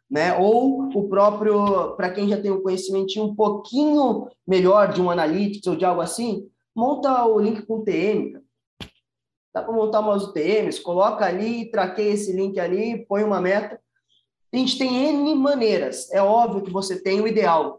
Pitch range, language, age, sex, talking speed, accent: 165-205 Hz, Portuguese, 20-39, male, 175 wpm, Brazilian